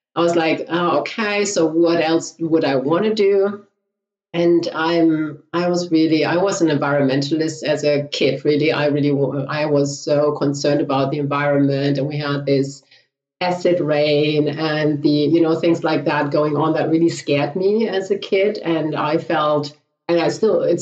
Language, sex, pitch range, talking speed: English, female, 150-175 Hz, 185 wpm